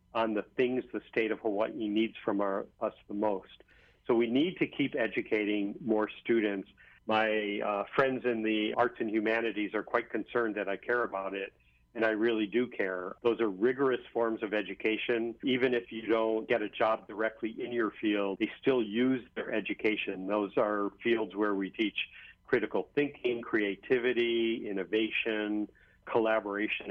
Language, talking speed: English, 165 wpm